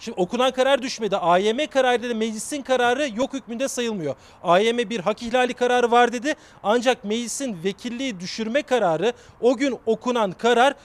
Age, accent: 40-59, native